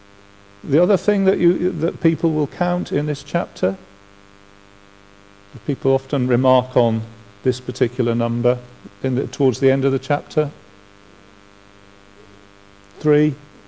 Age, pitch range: 50-69, 100-145 Hz